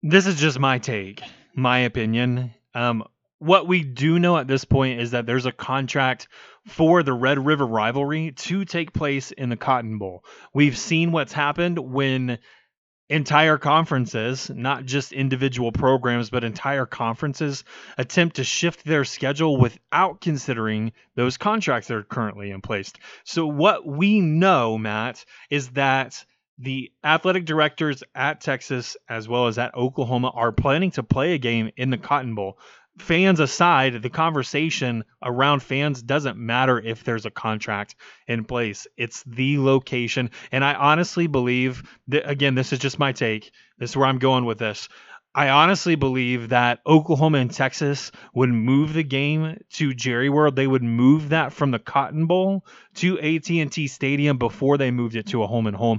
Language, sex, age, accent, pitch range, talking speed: English, male, 30-49, American, 120-150 Hz, 165 wpm